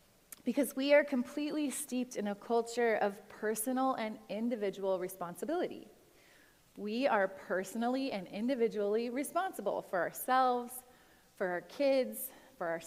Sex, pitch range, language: female, 195-250 Hz, English